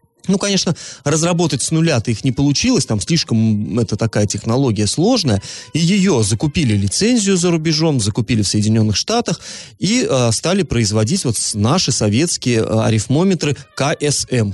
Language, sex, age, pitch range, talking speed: Russian, male, 30-49, 115-160 Hz, 135 wpm